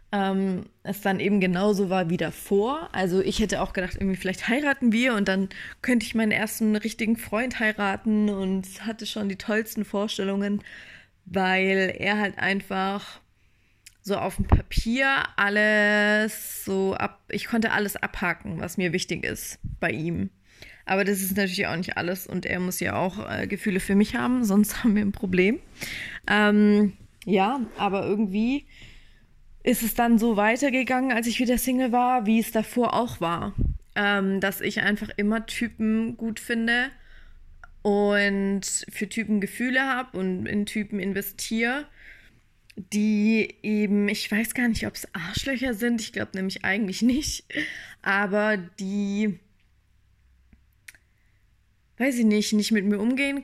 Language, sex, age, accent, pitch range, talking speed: German, female, 20-39, German, 195-225 Hz, 150 wpm